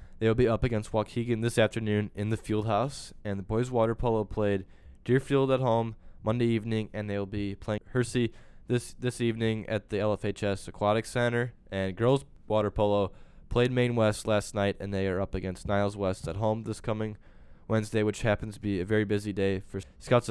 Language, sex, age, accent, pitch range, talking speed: English, male, 10-29, American, 100-115 Hz, 200 wpm